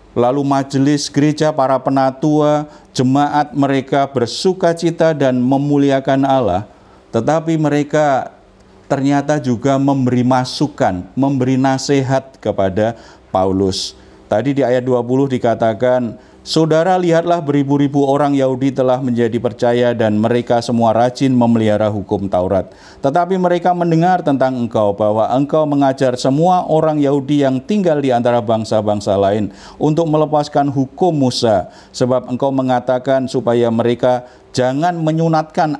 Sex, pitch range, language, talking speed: male, 120-145 Hz, Indonesian, 115 wpm